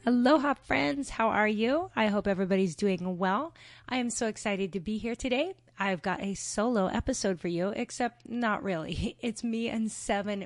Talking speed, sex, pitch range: 185 wpm, female, 175-215 Hz